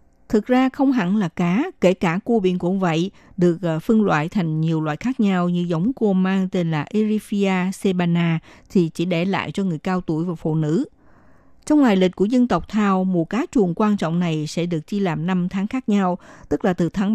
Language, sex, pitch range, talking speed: Vietnamese, female, 165-220 Hz, 225 wpm